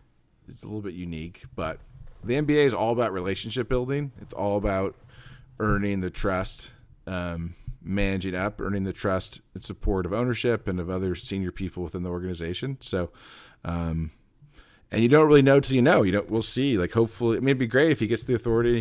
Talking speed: 200 wpm